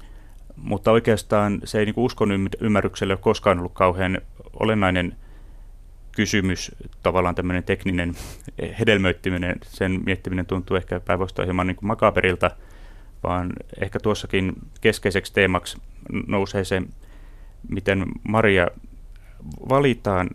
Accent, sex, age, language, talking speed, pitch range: native, male, 30-49, Finnish, 105 wpm, 90-105 Hz